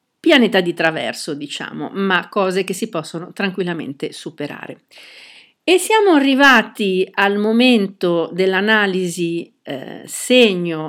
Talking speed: 105 wpm